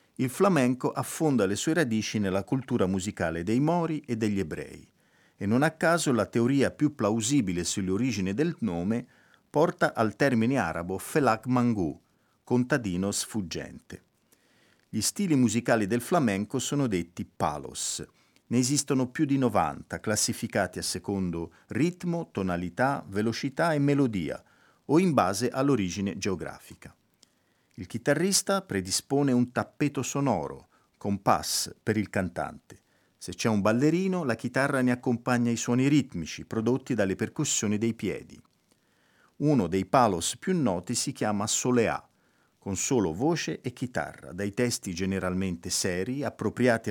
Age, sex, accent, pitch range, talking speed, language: 50-69, male, native, 100-140 Hz, 130 wpm, Italian